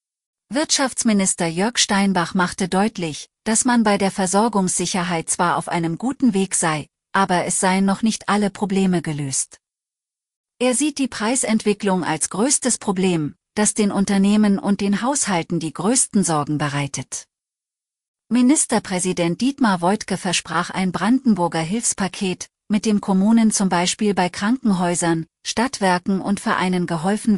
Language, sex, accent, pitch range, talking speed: German, female, German, 170-215 Hz, 130 wpm